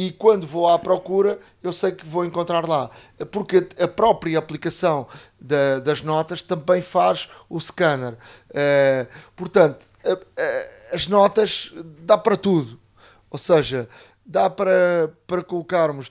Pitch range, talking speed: 140-180 Hz, 125 wpm